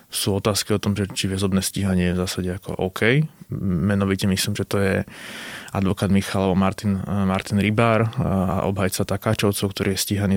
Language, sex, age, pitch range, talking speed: Slovak, male, 20-39, 100-110 Hz, 170 wpm